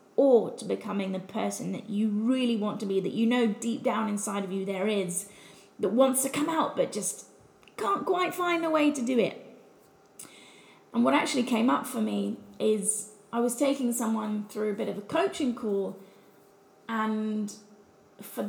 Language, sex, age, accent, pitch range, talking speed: English, female, 30-49, British, 205-245 Hz, 185 wpm